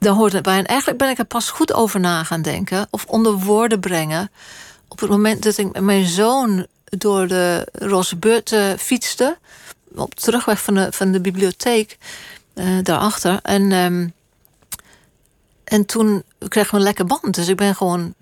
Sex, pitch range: female, 180-225 Hz